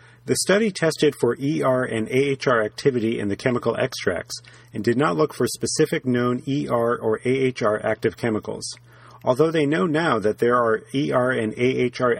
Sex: male